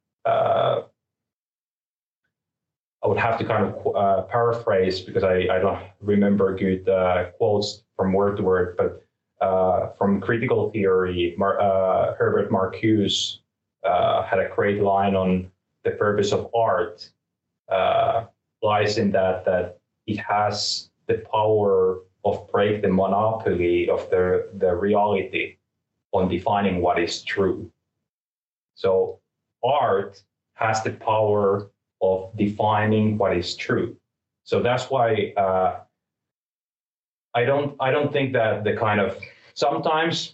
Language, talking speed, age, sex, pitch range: English, 130 wpm, 30-49, male, 95-120 Hz